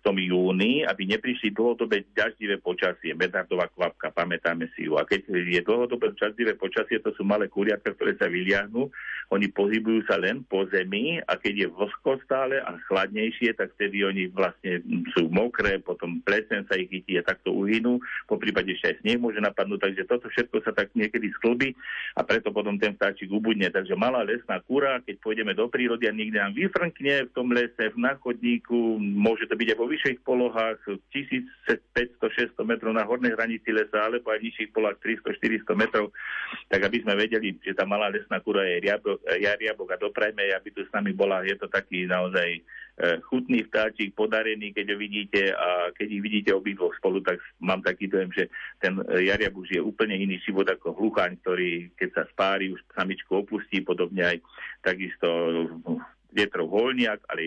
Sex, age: male, 50-69